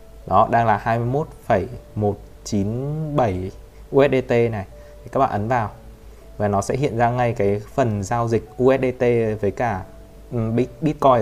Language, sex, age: Vietnamese, male, 20-39